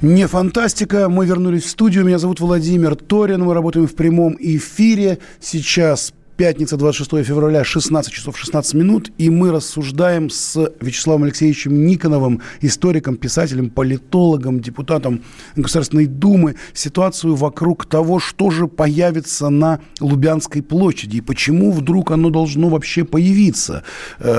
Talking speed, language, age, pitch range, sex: 130 wpm, Russian, 30-49, 135-165 Hz, male